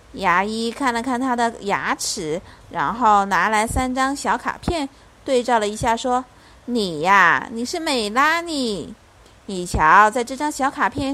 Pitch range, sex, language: 220-280 Hz, female, Chinese